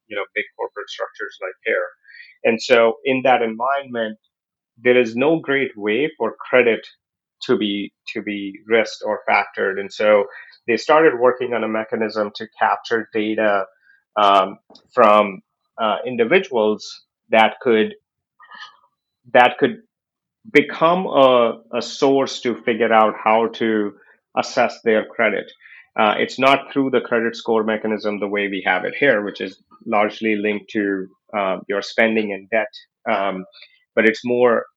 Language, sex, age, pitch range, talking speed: English, male, 30-49, 105-130 Hz, 145 wpm